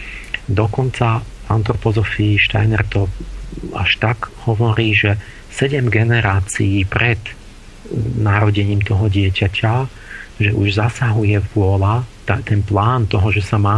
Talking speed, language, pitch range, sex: 105 wpm, Slovak, 100-110 Hz, male